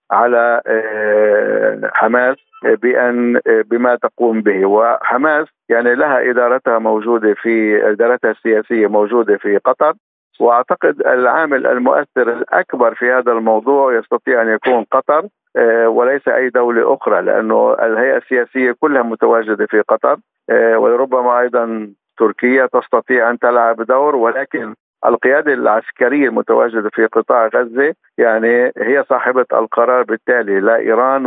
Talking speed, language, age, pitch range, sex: 115 wpm, Arabic, 50-69, 115-150 Hz, male